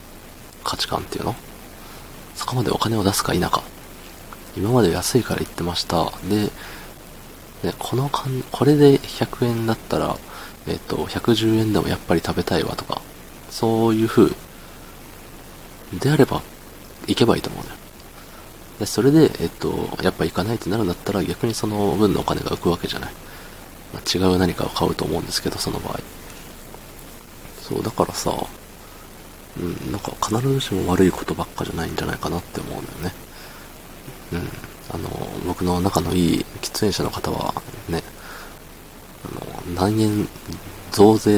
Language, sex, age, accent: Japanese, male, 40-59, native